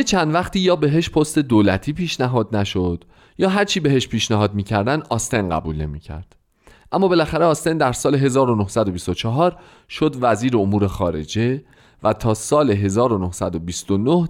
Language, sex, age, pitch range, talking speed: Persian, male, 40-59, 95-145 Hz, 125 wpm